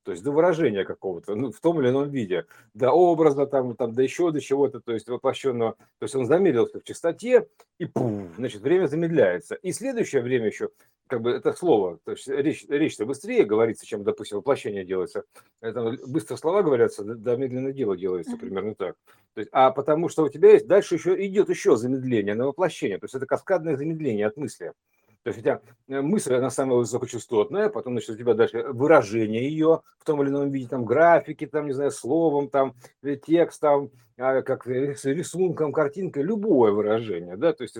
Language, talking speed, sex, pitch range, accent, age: Russian, 185 wpm, male, 130-200 Hz, native, 50-69